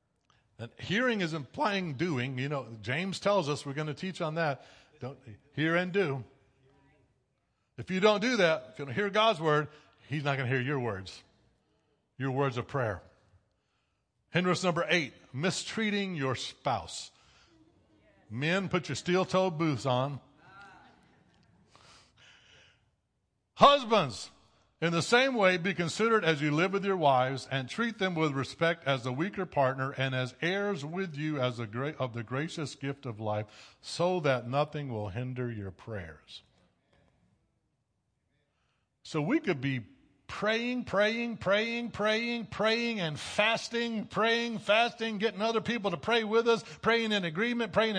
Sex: male